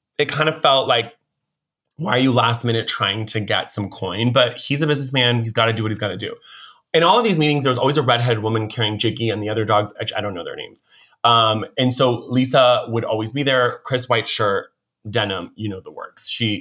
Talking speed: 245 wpm